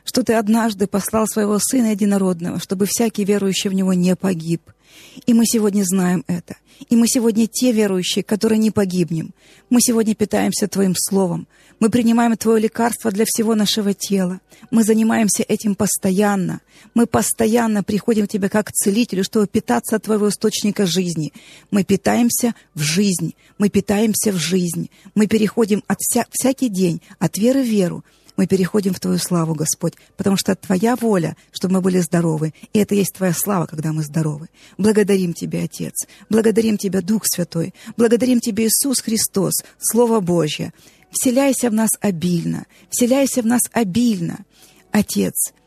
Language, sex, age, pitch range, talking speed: Russian, female, 30-49, 185-225 Hz, 155 wpm